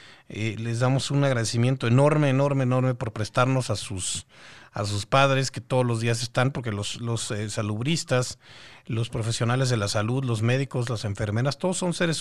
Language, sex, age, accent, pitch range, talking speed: Spanish, male, 40-59, Mexican, 110-140 Hz, 180 wpm